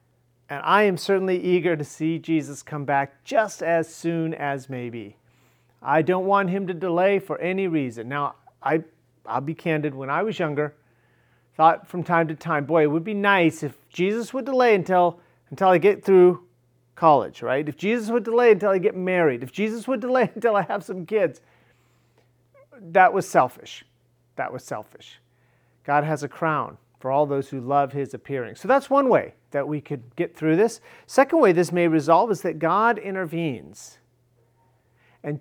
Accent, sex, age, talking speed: American, male, 40-59, 185 wpm